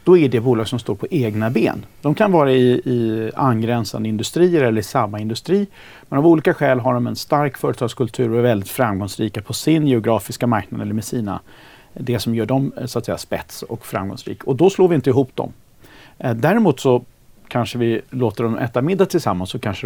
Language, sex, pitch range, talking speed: Swedish, male, 110-145 Hz, 200 wpm